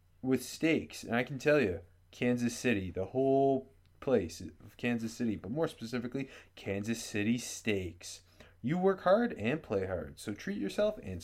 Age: 20-39